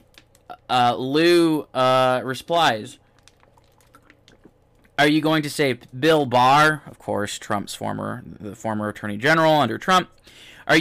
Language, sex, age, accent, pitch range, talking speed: English, male, 20-39, American, 125-180 Hz, 120 wpm